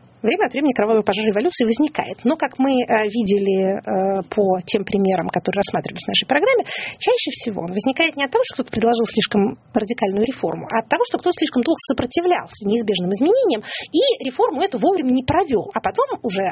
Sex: female